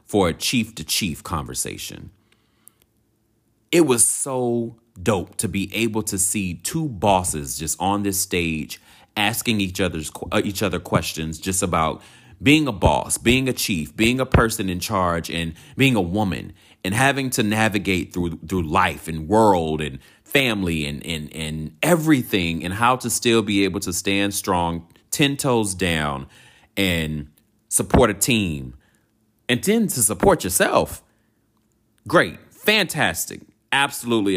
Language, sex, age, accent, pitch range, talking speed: English, male, 30-49, American, 95-120 Hz, 145 wpm